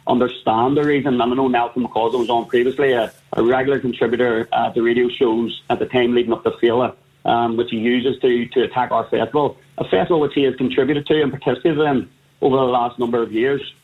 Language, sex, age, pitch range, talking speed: English, male, 30-49, 120-140 Hz, 220 wpm